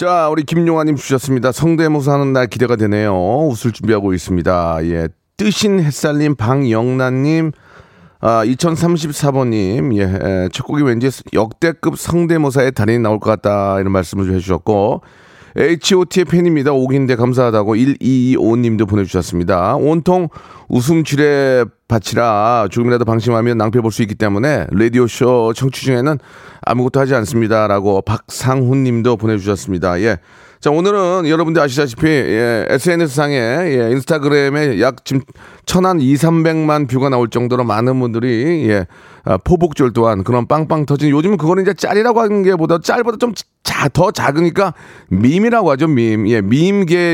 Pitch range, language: 110-155 Hz, Korean